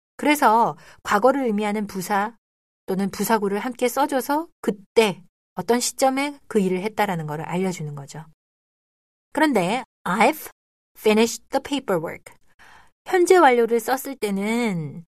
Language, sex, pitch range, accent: Korean, female, 180-260 Hz, native